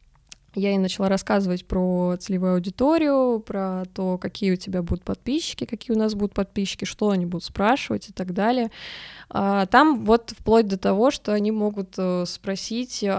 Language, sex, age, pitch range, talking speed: Russian, female, 20-39, 190-235 Hz, 160 wpm